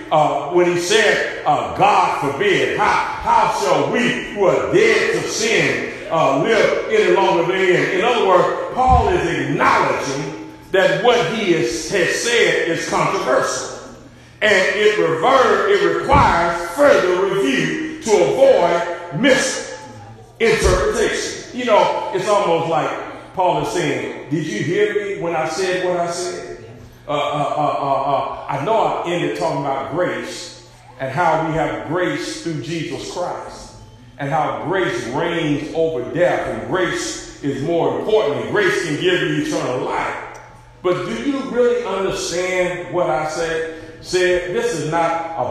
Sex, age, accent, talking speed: male, 50-69, American, 145 wpm